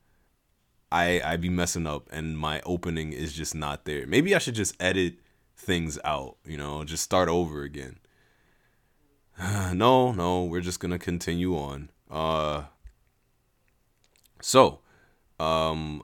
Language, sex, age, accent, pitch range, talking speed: English, male, 20-39, American, 80-100 Hz, 130 wpm